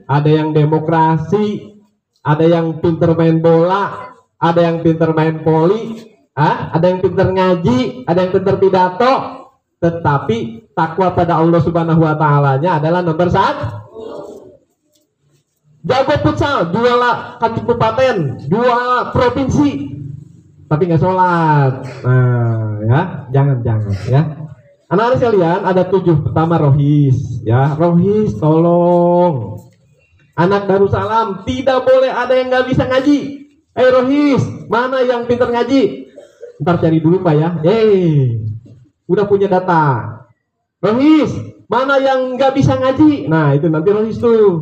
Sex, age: male, 20-39